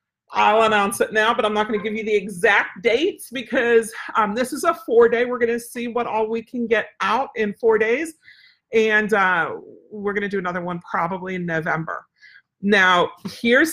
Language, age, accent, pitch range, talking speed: English, 40-59, American, 195-240 Hz, 200 wpm